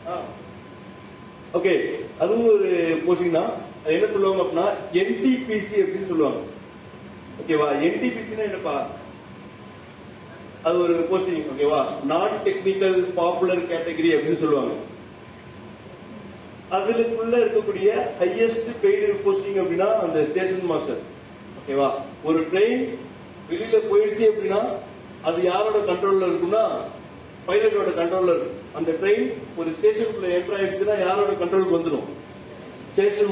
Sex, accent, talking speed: male, native, 45 wpm